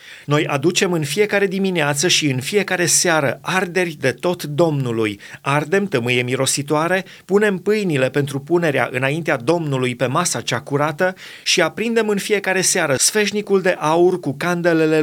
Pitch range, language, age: 135-185 Hz, Romanian, 30-49